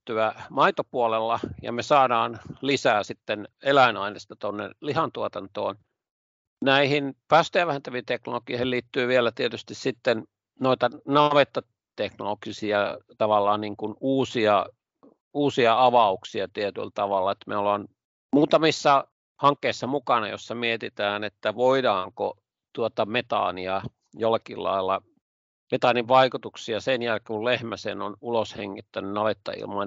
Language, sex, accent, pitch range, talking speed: Finnish, male, native, 105-135 Hz, 100 wpm